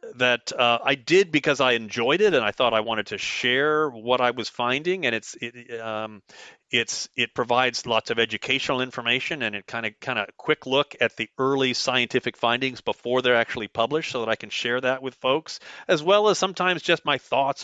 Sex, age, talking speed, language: male, 40-59, 210 wpm, English